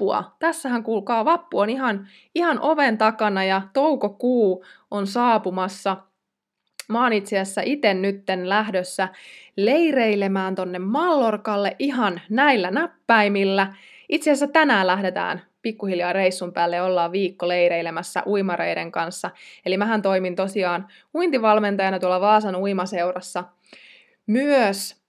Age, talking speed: 20-39, 110 wpm